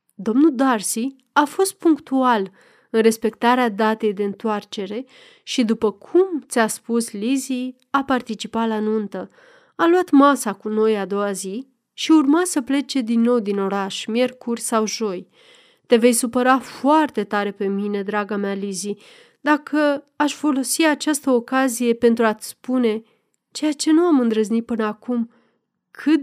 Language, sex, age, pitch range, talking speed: Romanian, female, 30-49, 220-295 Hz, 150 wpm